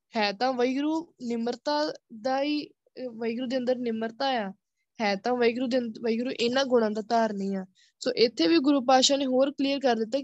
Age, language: 20-39, Punjabi